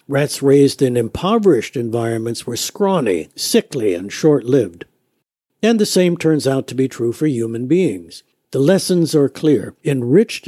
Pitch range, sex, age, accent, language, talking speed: 130-160 Hz, male, 60-79, American, English, 150 wpm